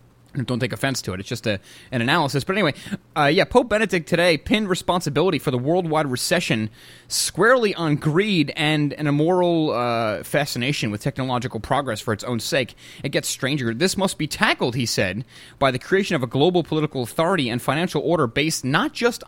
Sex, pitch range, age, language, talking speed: male, 120-175 Hz, 30-49, English, 190 wpm